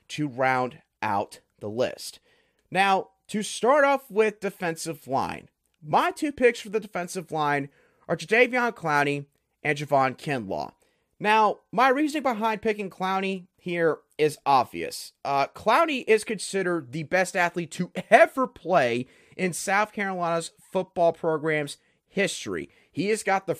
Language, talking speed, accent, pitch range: English, 135 wpm, American, 155-225 Hz